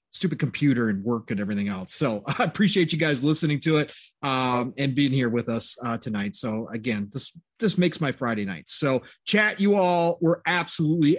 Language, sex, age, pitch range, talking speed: English, male, 30-49, 130-170 Hz, 200 wpm